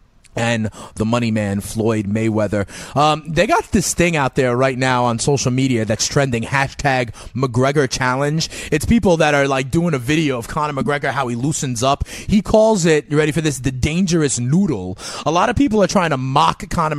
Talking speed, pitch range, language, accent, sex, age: 200 wpm, 120-150 Hz, English, American, male, 30-49